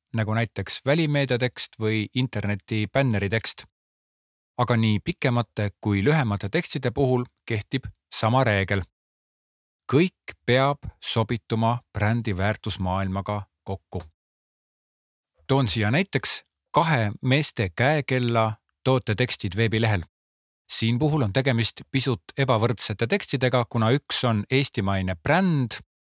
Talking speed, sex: 100 wpm, male